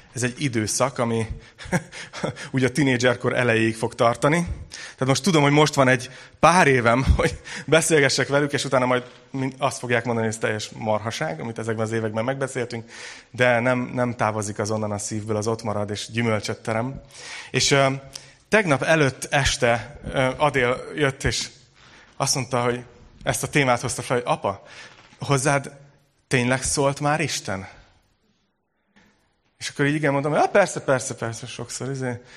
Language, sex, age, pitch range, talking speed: Hungarian, male, 30-49, 115-140 Hz, 150 wpm